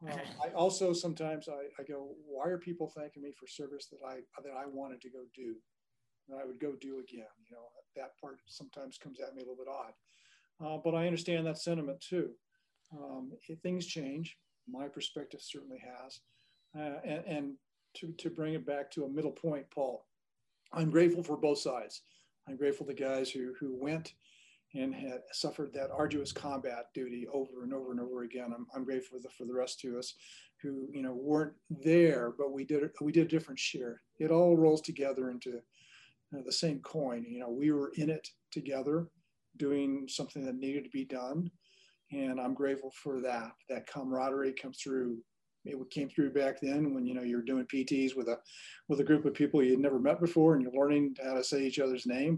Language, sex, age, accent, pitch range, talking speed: English, male, 50-69, American, 130-155 Hz, 205 wpm